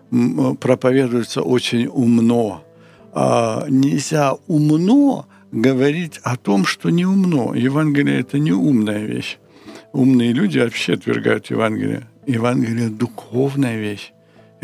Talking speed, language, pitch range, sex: 110 wpm, Ukrainian, 110-140 Hz, male